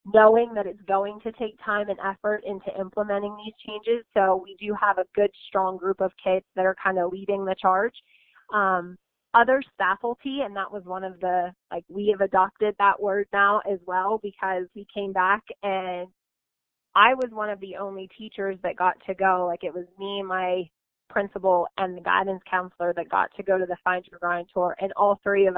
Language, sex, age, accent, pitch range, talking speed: English, female, 20-39, American, 185-210 Hz, 205 wpm